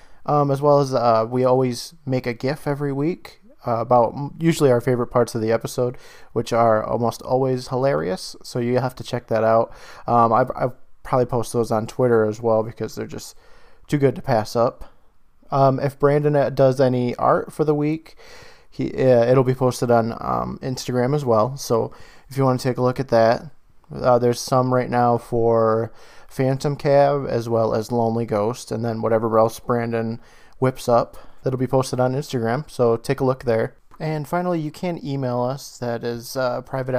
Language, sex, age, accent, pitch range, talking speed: English, male, 20-39, American, 115-135 Hz, 195 wpm